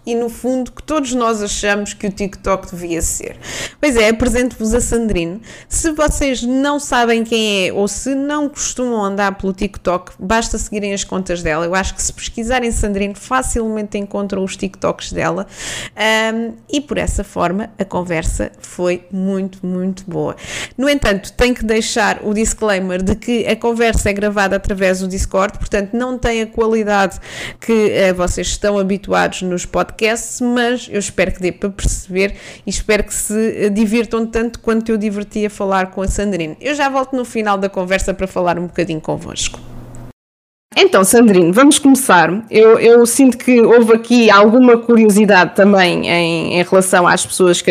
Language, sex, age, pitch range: Portuguese, female, 20-39, 190-230 Hz